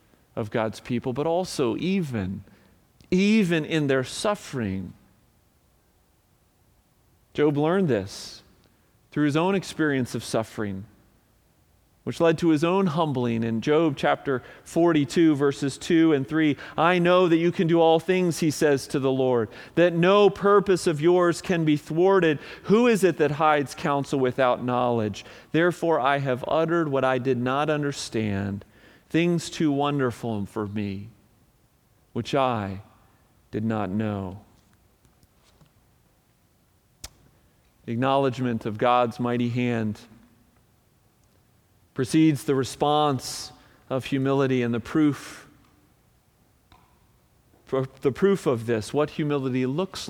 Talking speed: 120 wpm